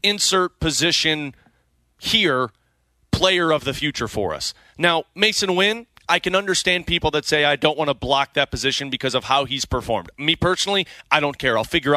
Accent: American